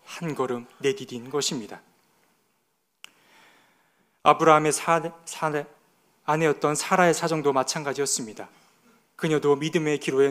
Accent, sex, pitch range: native, male, 140-160 Hz